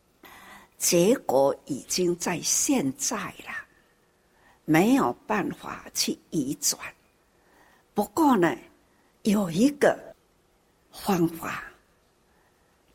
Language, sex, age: Chinese, female, 60-79